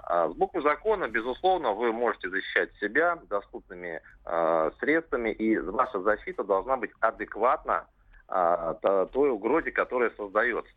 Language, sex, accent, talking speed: Russian, male, native, 125 wpm